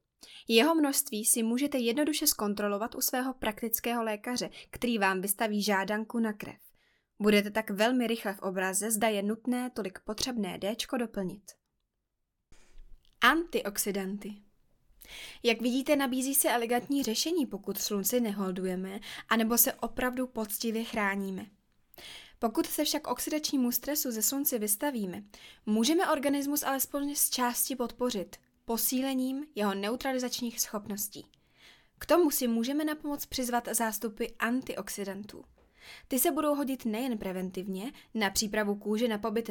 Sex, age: female, 20-39